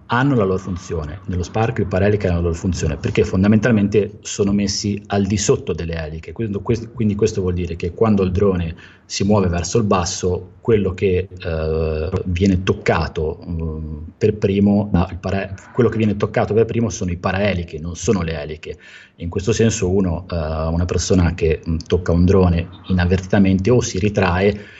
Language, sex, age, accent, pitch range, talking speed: Italian, male, 30-49, native, 85-100 Hz, 170 wpm